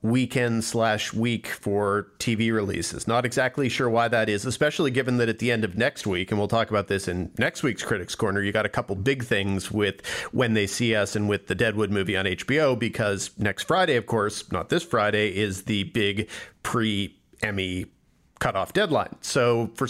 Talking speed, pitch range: 200 wpm, 110-130 Hz